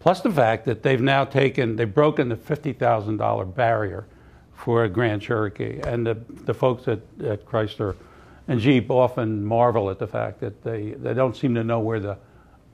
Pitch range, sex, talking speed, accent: 105-125 Hz, male, 185 wpm, American